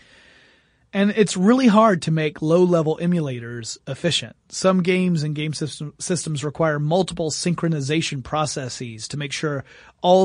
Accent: American